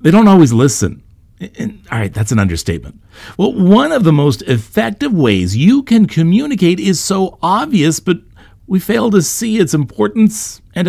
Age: 50-69